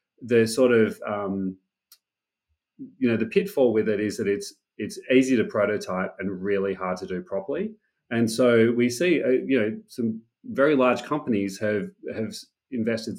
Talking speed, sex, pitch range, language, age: 170 wpm, male, 100-120 Hz, English, 30-49